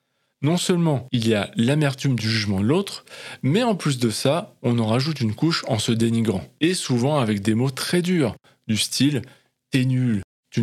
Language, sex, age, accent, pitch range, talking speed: French, male, 20-39, French, 110-150 Hz, 200 wpm